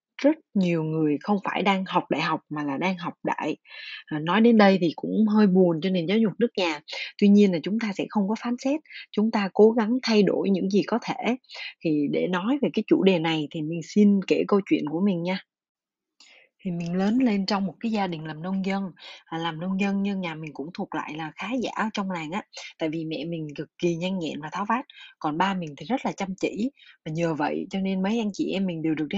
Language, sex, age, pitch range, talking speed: Vietnamese, female, 20-39, 165-220 Hz, 255 wpm